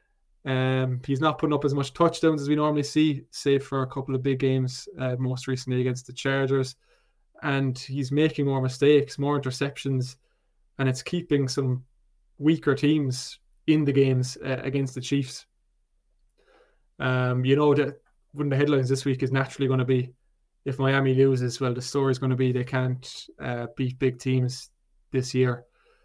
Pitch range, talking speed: 130-140 Hz, 180 wpm